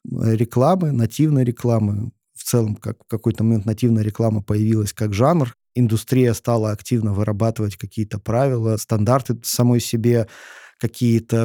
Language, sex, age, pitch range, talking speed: Russian, male, 20-39, 110-120 Hz, 120 wpm